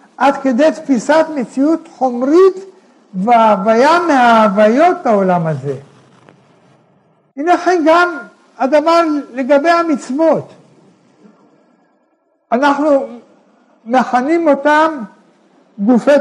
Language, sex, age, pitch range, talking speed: Hebrew, male, 60-79, 225-300 Hz, 70 wpm